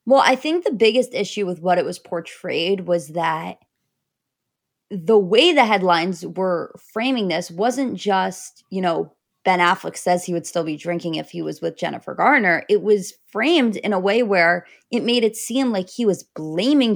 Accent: American